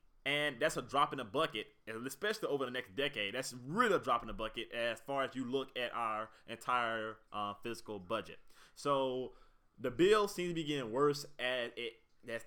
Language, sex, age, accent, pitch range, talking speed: English, male, 20-39, American, 110-140 Hz, 195 wpm